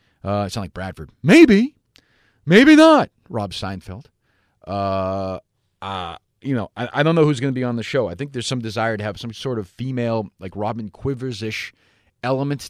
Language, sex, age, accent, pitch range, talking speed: English, male, 30-49, American, 105-145 Hz, 190 wpm